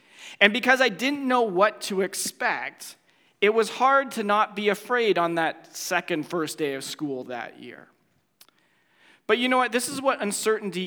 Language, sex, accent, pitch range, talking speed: English, male, American, 170-215 Hz, 175 wpm